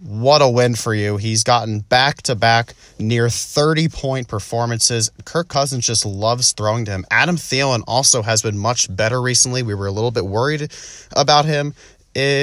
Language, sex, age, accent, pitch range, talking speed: English, male, 30-49, American, 110-130 Hz, 170 wpm